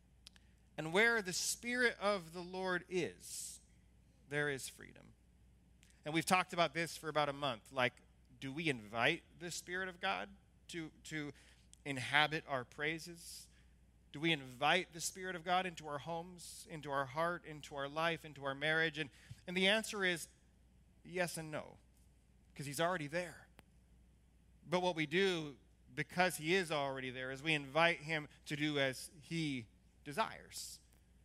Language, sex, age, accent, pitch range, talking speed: English, male, 30-49, American, 140-190 Hz, 155 wpm